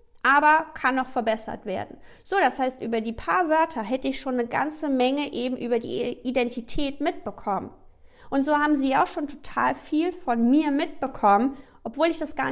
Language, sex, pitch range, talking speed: German, female, 220-280 Hz, 180 wpm